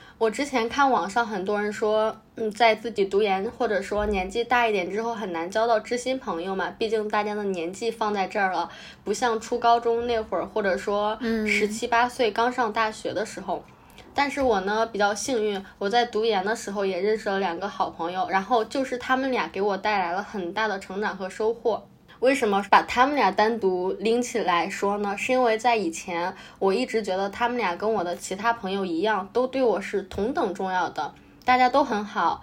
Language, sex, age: Chinese, female, 10-29